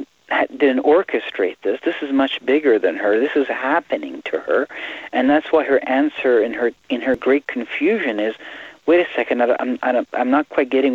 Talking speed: 185 wpm